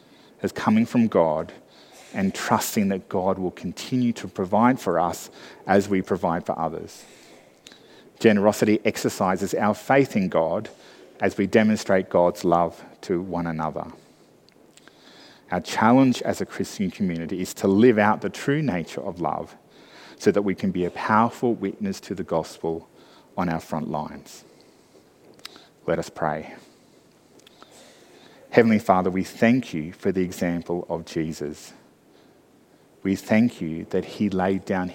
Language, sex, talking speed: English, male, 145 wpm